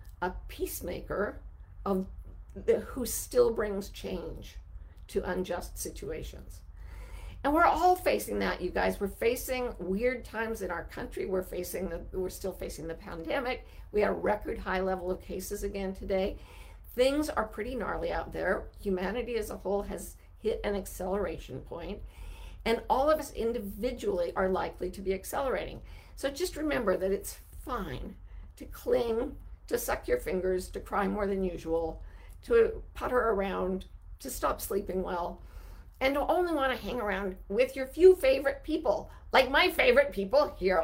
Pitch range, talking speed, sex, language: 185-280 Hz, 160 wpm, female, English